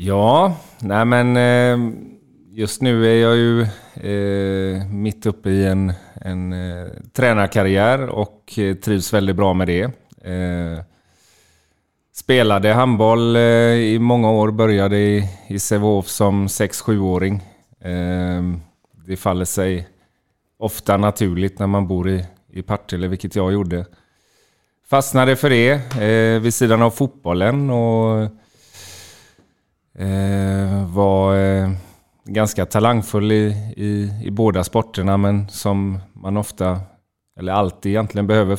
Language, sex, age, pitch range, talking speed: Swedish, male, 30-49, 90-110 Hz, 105 wpm